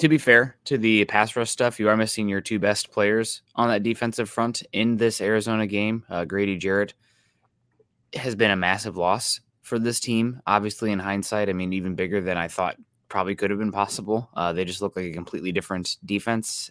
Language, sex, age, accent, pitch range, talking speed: English, male, 20-39, American, 100-115 Hz, 210 wpm